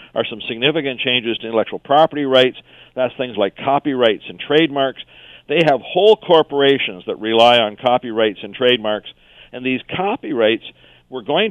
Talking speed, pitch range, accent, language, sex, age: 150 wpm, 110-145 Hz, American, English, male, 50-69